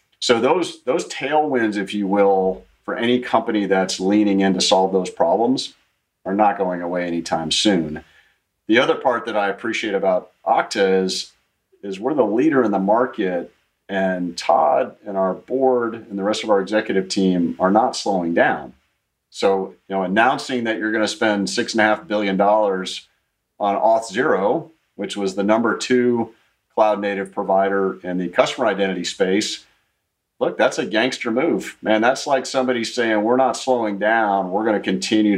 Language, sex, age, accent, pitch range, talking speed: English, male, 40-59, American, 95-115 Hz, 175 wpm